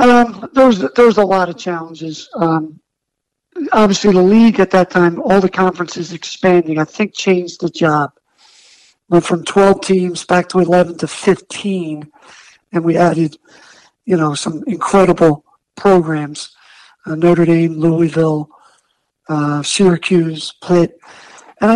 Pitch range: 170-205 Hz